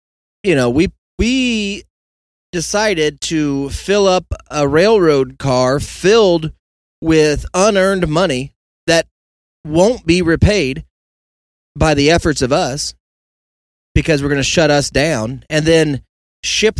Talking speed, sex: 120 wpm, male